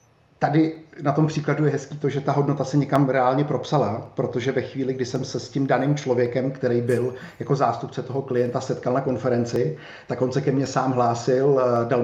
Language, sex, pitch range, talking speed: Czech, male, 120-135 Hz, 205 wpm